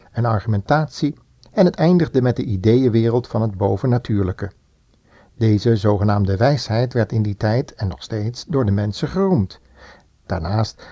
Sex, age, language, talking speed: male, 60-79, Dutch, 145 wpm